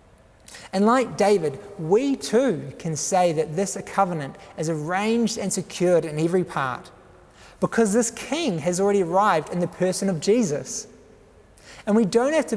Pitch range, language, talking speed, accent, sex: 135-195 Hz, English, 160 wpm, Australian, male